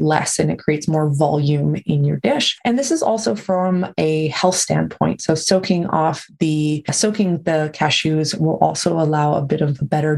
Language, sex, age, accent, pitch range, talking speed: English, female, 20-39, American, 150-185 Hz, 185 wpm